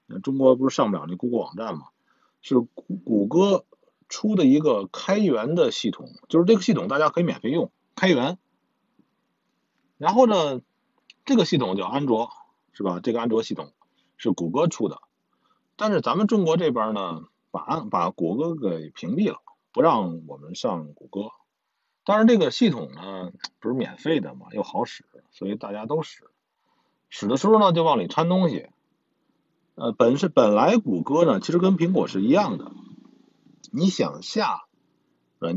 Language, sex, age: Chinese, male, 50-69